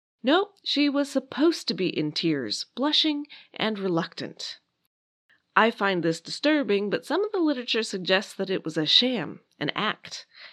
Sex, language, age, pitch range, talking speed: female, English, 30-49, 180-270 Hz, 160 wpm